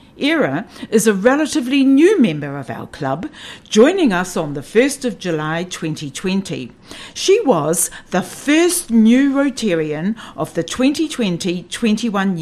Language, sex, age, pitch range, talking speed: English, female, 60-79, 170-270 Hz, 125 wpm